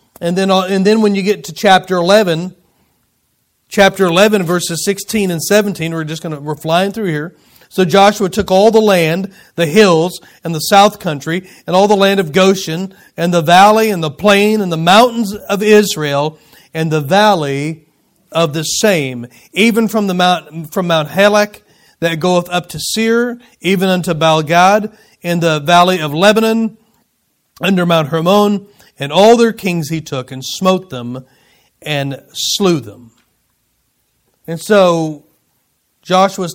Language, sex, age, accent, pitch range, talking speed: English, male, 40-59, American, 155-195 Hz, 160 wpm